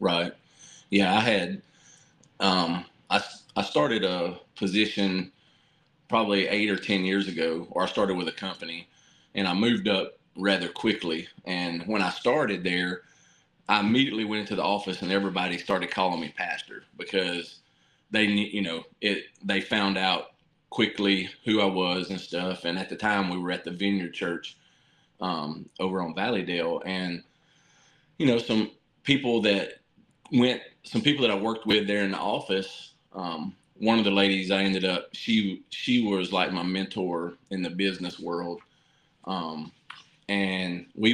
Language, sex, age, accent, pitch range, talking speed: English, male, 30-49, American, 90-105 Hz, 160 wpm